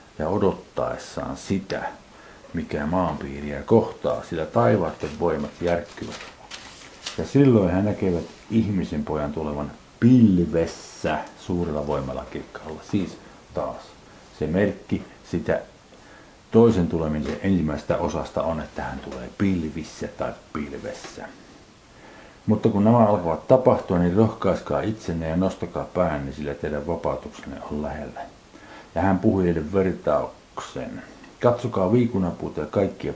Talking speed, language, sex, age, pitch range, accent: 110 wpm, Finnish, male, 50-69, 75-110 Hz, native